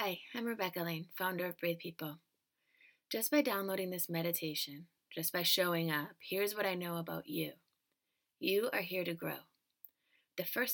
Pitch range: 165-205 Hz